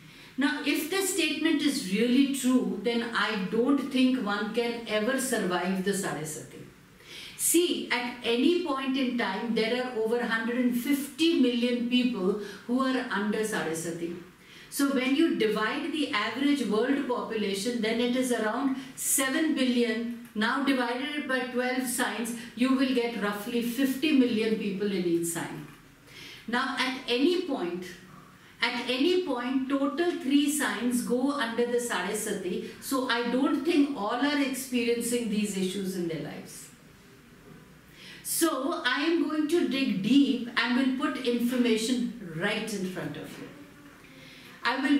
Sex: female